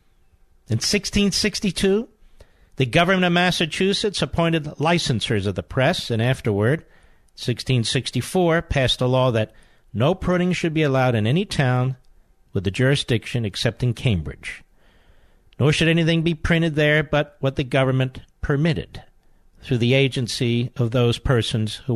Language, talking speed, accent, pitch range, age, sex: English, 135 wpm, American, 110-155 Hz, 50-69, male